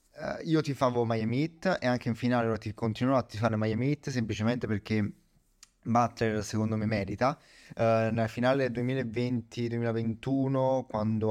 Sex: male